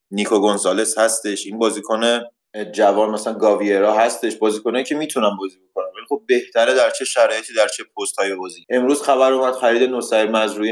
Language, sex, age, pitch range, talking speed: Persian, male, 30-49, 105-140 Hz, 170 wpm